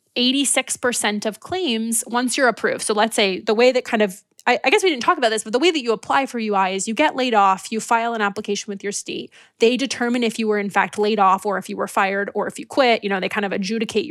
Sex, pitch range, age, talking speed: female, 205-245 Hz, 20-39, 270 wpm